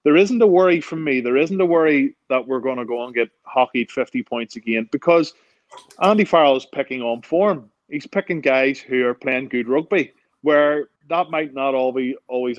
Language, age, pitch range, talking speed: English, 20-39, 120-140 Hz, 200 wpm